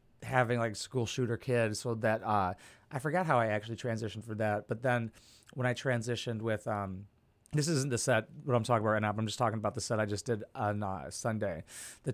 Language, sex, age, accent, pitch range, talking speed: English, male, 30-49, American, 110-130 Hz, 220 wpm